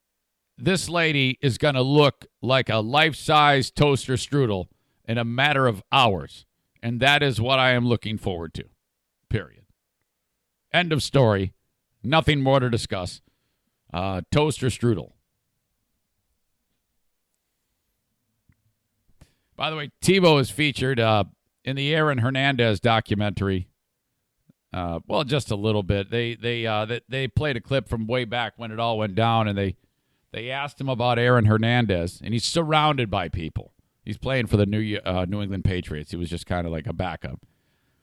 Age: 50-69